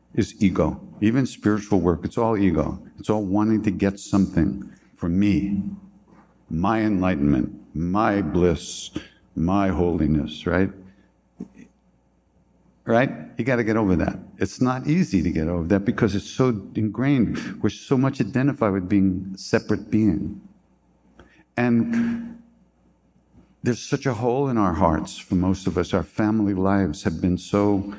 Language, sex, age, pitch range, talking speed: English, male, 60-79, 95-130 Hz, 145 wpm